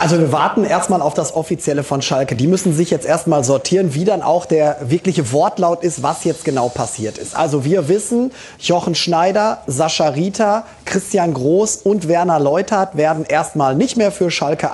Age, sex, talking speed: 30-49, male, 185 wpm